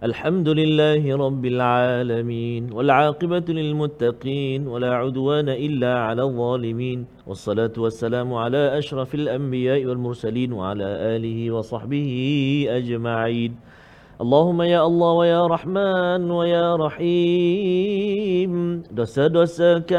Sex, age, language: male, 40-59, Malayalam